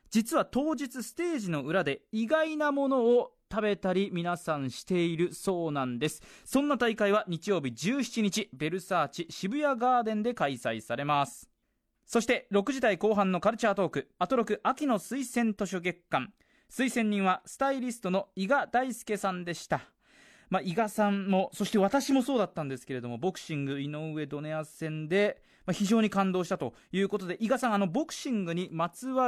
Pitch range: 155-240 Hz